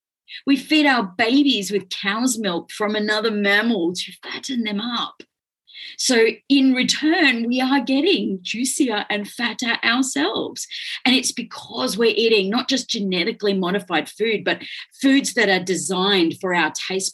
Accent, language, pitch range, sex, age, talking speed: Australian, English, 180-275 Hz, female, 40-59, 145 wpm